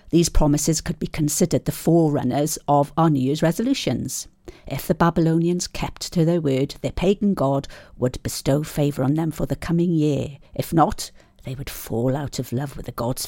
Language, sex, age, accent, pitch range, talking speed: English, female, 50-69, British, 145-175 Hz, 190 wpm